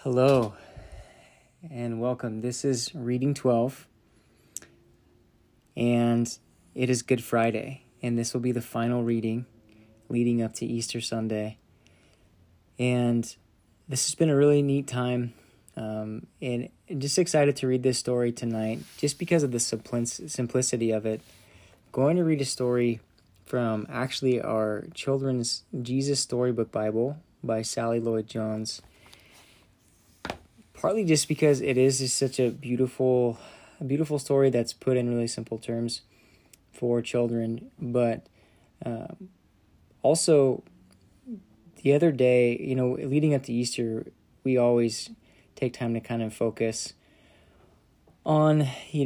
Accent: American